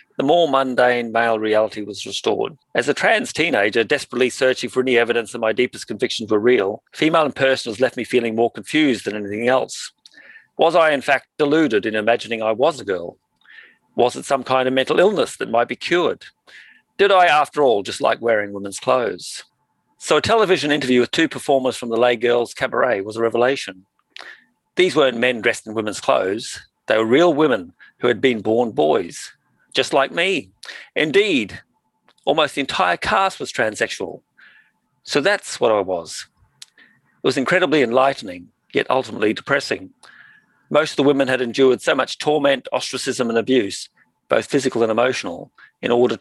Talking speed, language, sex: 175 wpm, English, male